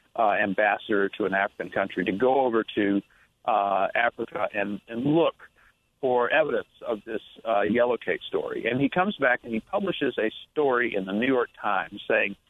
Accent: American